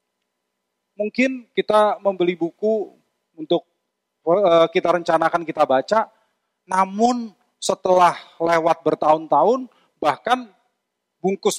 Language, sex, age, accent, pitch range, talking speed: Indonesian, male, 30-49, native, 150-225 Hz, 80 wpm